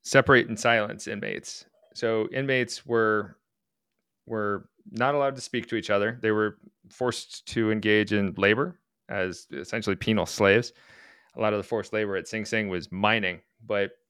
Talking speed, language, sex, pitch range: 160 wpm, English, male, 100-120 Hz